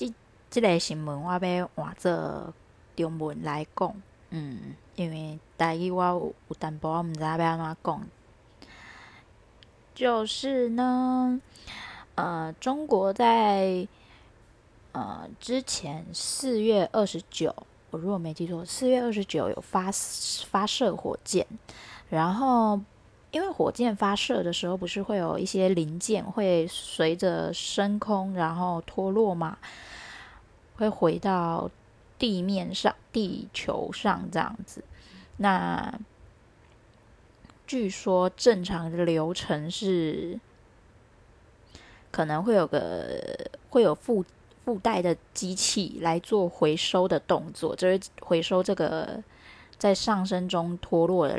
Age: 20-39